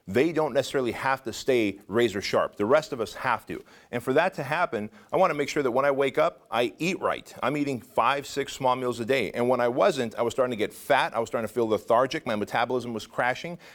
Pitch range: 115-150 Hz